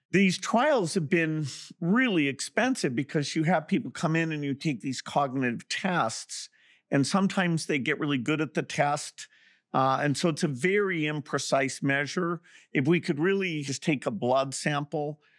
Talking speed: 170 wpm